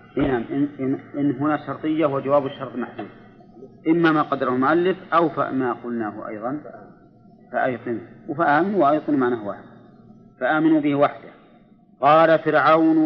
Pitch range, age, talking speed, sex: 125-155 Hz, 50-69, 125 wpm, male